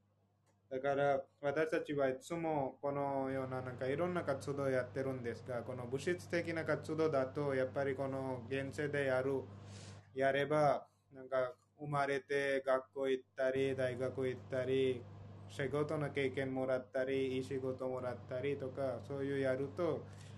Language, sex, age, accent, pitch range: Japanese, male, 20-39, Indian, 115-140 Hz